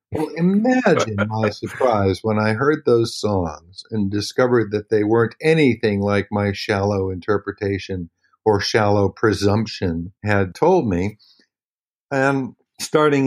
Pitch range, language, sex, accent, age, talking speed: 100-125 Hz, English, male, American, 50-69, 120 wpm